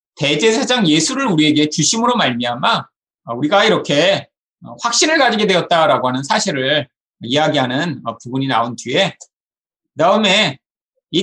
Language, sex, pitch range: Korean, male, 150-245 Hz